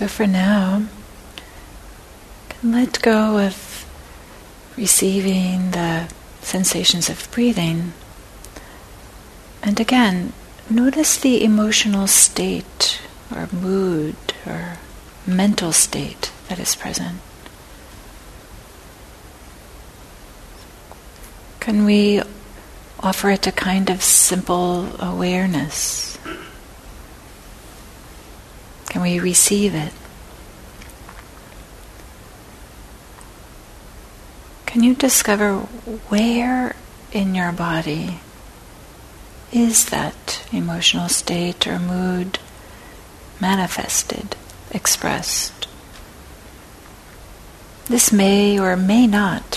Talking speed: 70 wpm